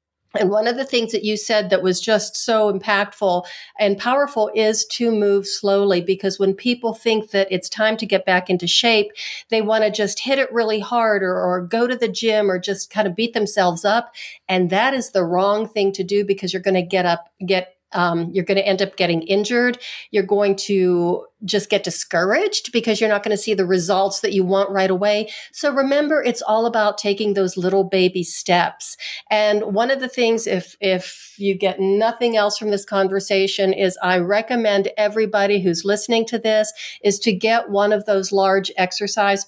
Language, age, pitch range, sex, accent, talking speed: English, 50-69, 190-220 Hz, female, American, 205 wpm